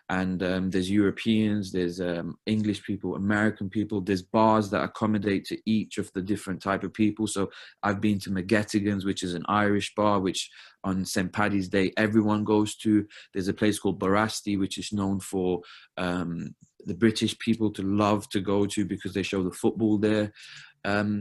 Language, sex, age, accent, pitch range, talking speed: English, male, 20-39, British, 95-110 Hz, 185 wpm